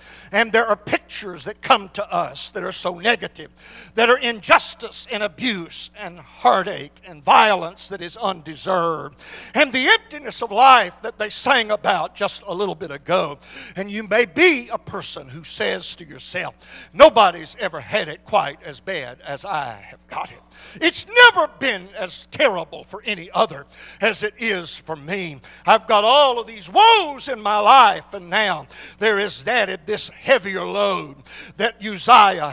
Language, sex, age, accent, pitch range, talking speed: English, male, 60-79, American, 185-235 Hz, 170 wpm